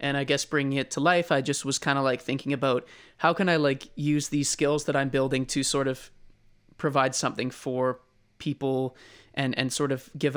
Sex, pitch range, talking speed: male, 130-145 Hz, 215 wpm